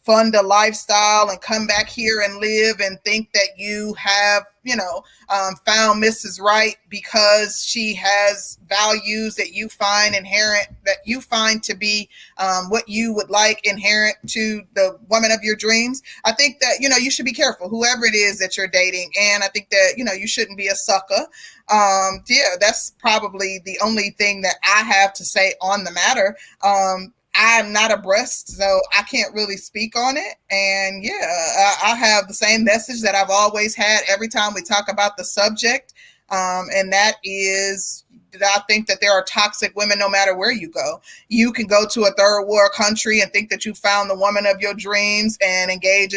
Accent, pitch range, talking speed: American, 195-220 Hz, 200 wpm